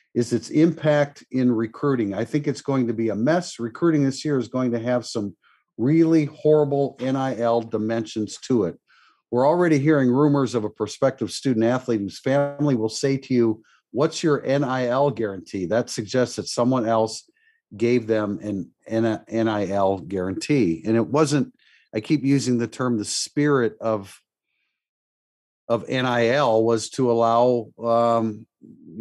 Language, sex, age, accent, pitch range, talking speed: English, male, 50-69, American, 110-135 Hz, 150 wpm